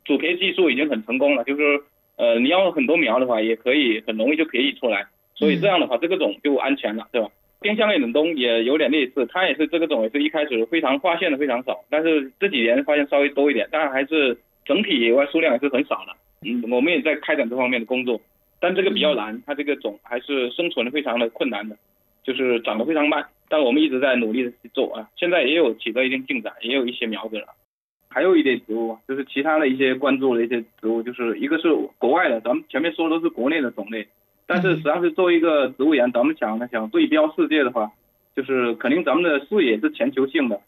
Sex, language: male, Chinese